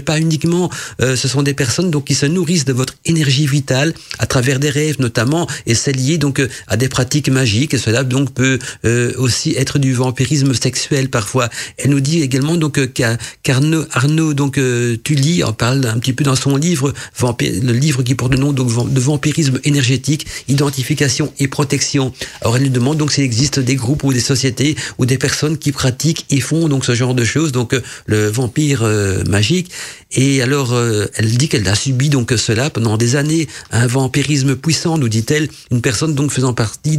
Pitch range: 125-150 Hz